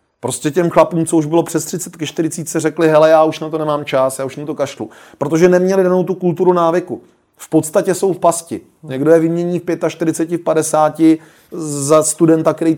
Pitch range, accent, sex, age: 140-160 Hz, native, male, 30-49